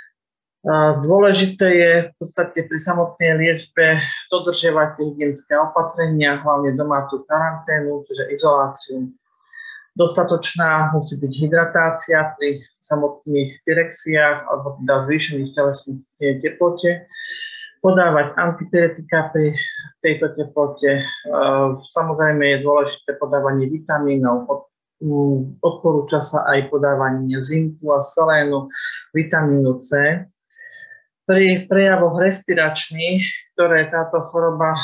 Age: 40-59